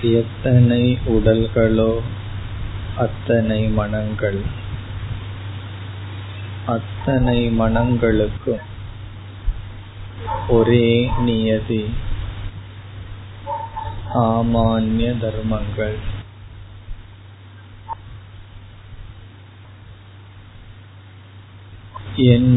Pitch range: 100-110 Hz